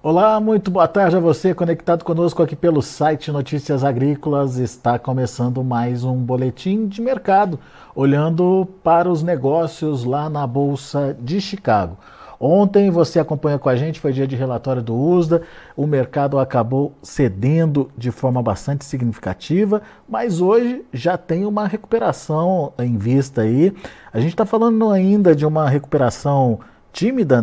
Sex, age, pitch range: male, 50-69, 130-175 Hz